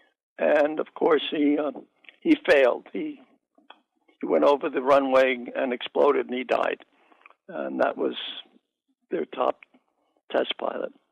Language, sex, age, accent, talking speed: English, male, 60-79, American, 135 wpm